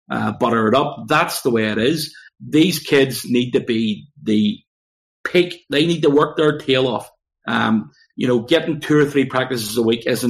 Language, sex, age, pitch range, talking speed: English, male, 30-49, 115-150 Hz, 205 wpm